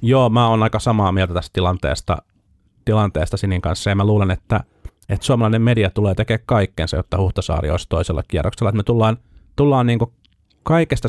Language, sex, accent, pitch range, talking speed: Finnish, male, native, 90-110 Hz, 175 wpm